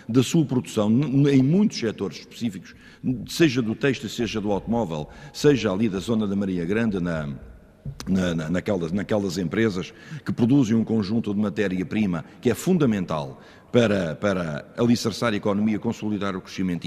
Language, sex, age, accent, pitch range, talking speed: Portuguese, male, 50-69, Portuguese, 85-115 Hz, 140 wpm